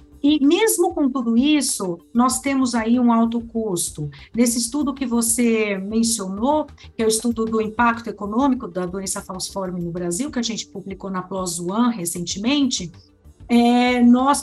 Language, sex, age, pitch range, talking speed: Portuguese, female, 50-69, 210-270 Hz, 155 wpm